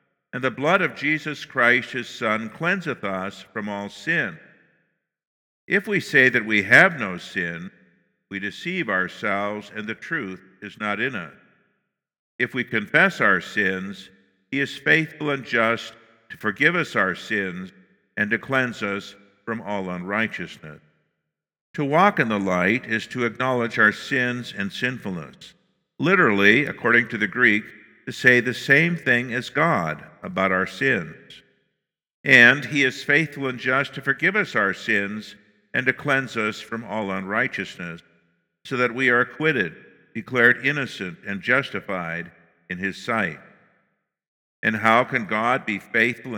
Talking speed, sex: 150 wpm, male